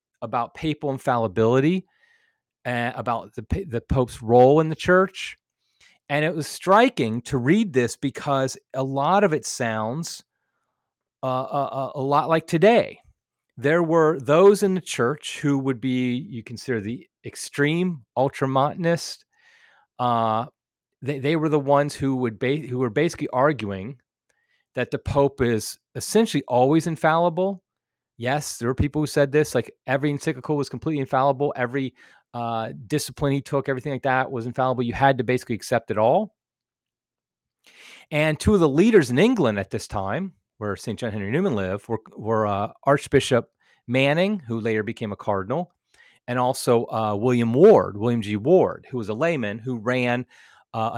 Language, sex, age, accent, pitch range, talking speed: English, male, 30-49, American, 115-150 Hz, 160 wpm